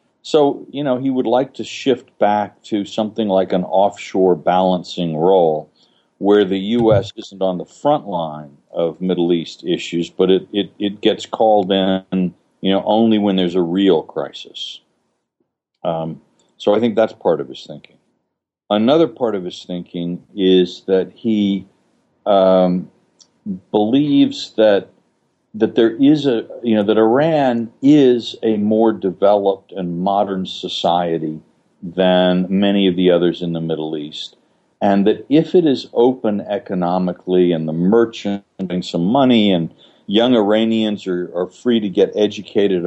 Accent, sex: American, male